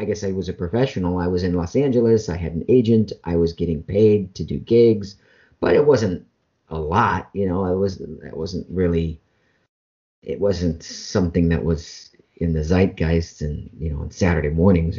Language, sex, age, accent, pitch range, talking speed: English, male, 50-69, American, 80-100 Hz, 190 wpm